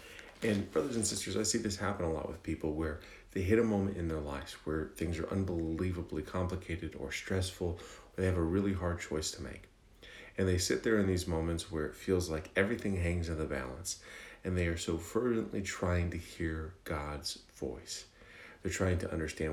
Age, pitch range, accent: 40-59, 85-100 Hz, American